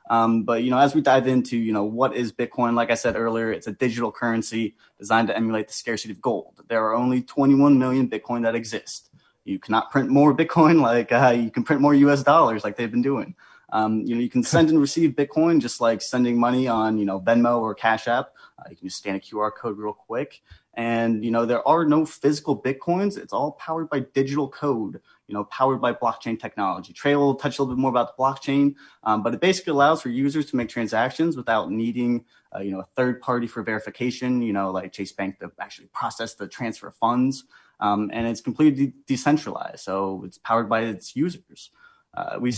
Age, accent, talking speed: 20-39, American, 225 wpm